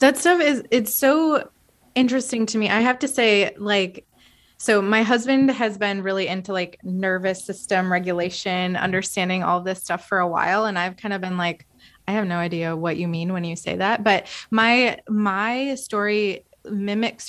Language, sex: English, female